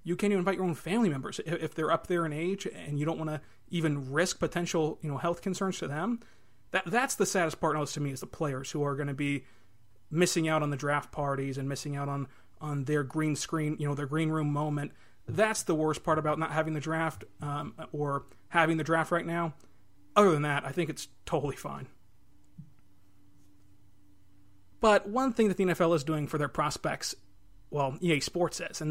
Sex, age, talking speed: male, 30-49, 215 wpm